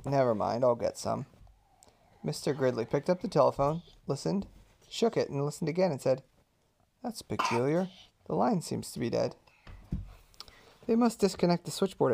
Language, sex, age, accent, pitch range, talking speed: English, male, 30-49, American, 130-185 Hz, 160 wpm